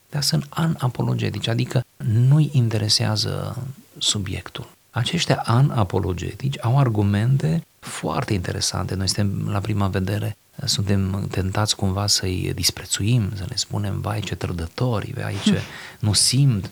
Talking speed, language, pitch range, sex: 110 wpm, Romanian, 100-140 Hz, male